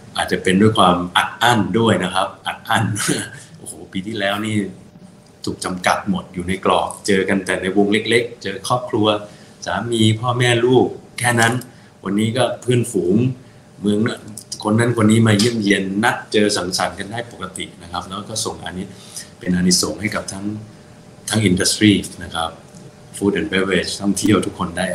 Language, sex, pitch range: Thai, male, 90-105 Hz